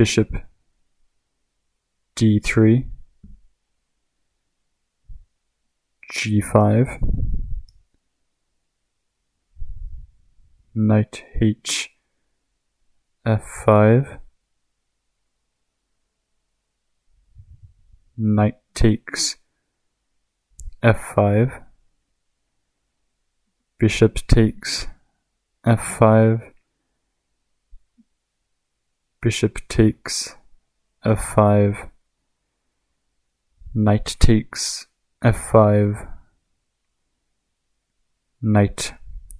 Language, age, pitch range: English, 20-39, 90-110 Hz